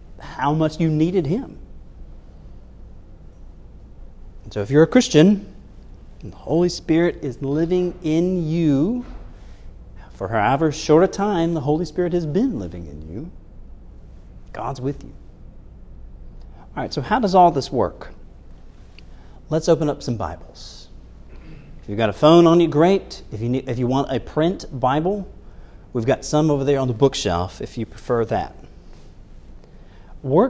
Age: 40-59